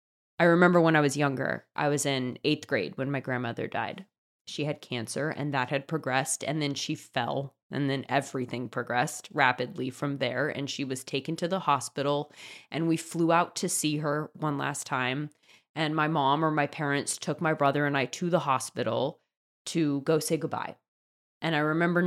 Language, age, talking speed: English, 20-39, 195 wpm